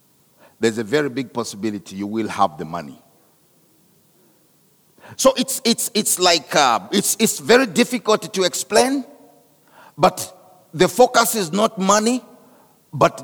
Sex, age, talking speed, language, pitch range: male, 50-69, 130 wpm, English, 135-215 Hz